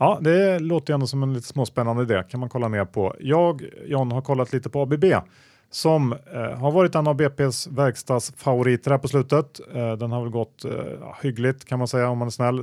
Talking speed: 230 wpm